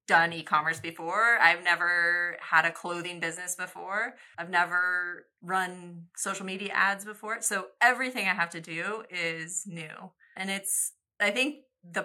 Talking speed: 150 wpm